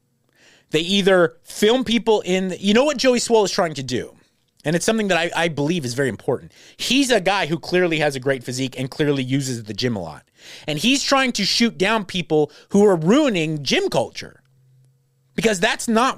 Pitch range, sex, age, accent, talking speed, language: 140-210 Hz, male, 30-49, American, 205 wpm, English